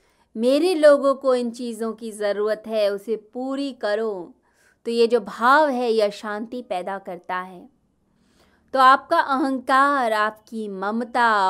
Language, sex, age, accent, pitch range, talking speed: Hindi, female, 20-39, native, 205-265 Hz, 135 wpm